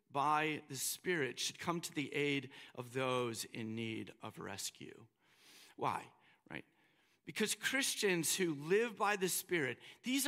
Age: 50-69